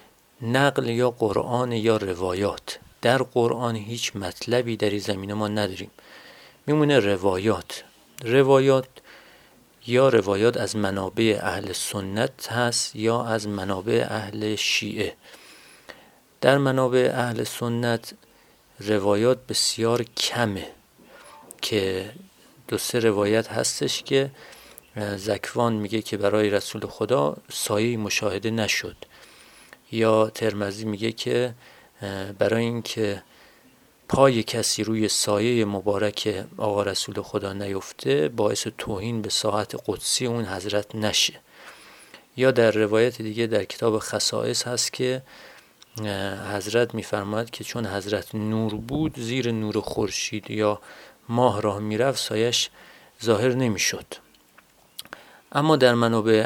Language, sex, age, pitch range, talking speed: Persian, male, 40-59, 105-120 Hz, 110 wpm